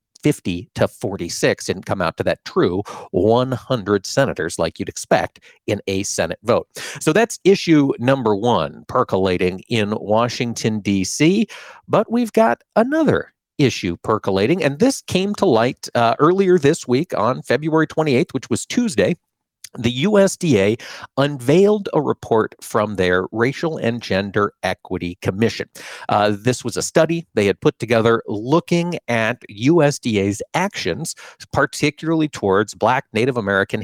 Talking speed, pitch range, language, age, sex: 140 wpm, 110-160 Hz, English, 50-69, male